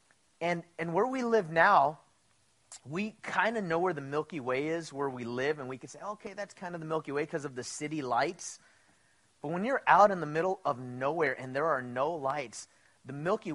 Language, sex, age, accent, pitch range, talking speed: English, male, 30-49, American, 145-185 Hz, 220 wpm